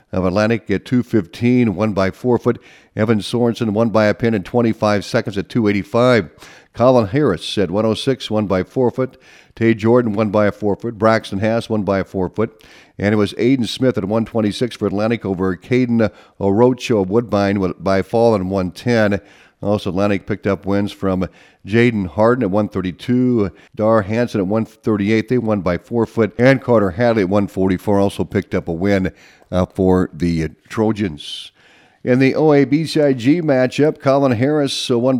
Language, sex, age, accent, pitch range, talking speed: English, male, 50-69, American, 100-120 Hz, 170 wpm